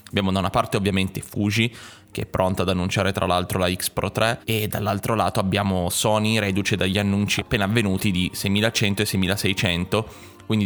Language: Italian